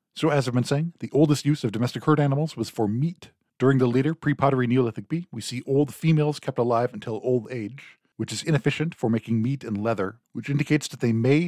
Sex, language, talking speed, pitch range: male, English, 225 wpm, 115-145 Hz